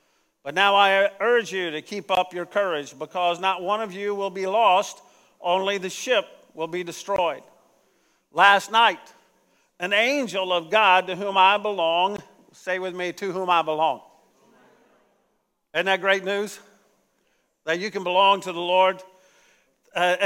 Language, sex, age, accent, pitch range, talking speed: English, male, 50-69, American, 170-205 Hz, 155 wpm